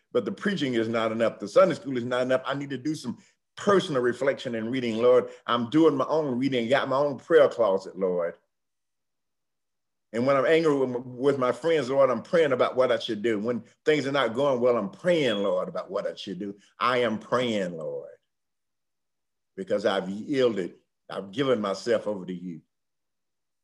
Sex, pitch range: male, 110-145 Hz